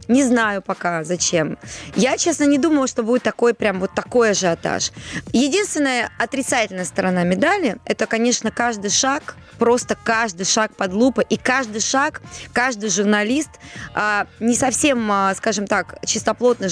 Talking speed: 135 wpm